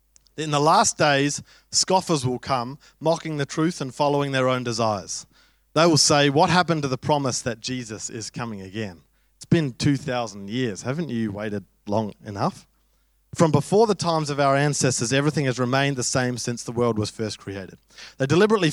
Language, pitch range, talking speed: English, 120-150 Hz, 185 wpm